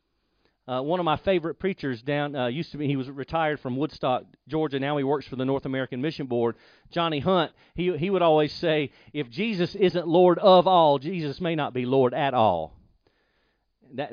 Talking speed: 200 wpm